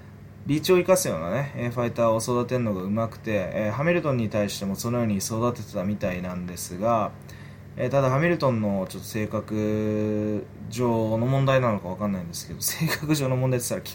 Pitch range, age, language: 105-140 Hz, 20-39, Japanese